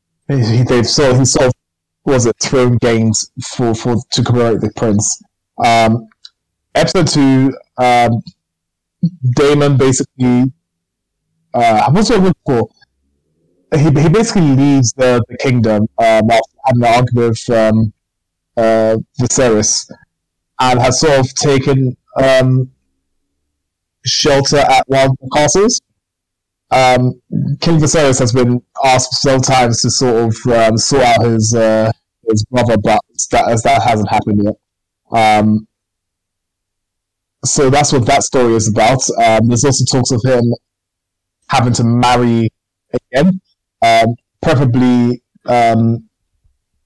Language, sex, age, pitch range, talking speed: English, male, 20-39, 105-130 Hz, 125 wpm